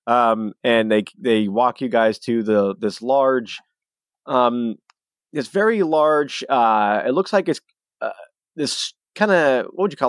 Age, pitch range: 20-39, 110-130 Hz